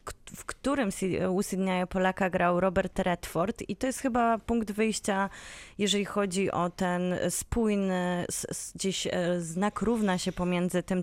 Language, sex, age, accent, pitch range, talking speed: Polish, female, 20-39, native, 175-210 Hz, 135 wpm